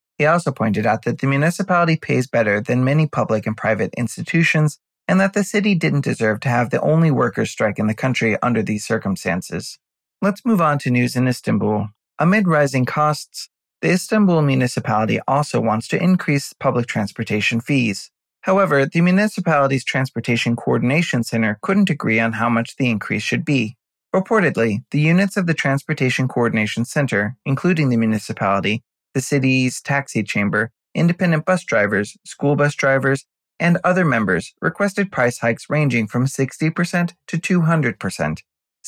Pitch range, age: 115-165 Hz, 30-49